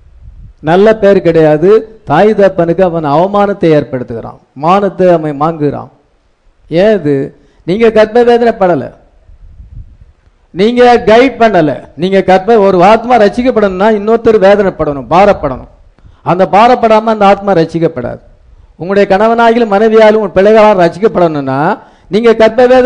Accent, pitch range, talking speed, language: Indian, 150-230 Hz, 115 wpm, English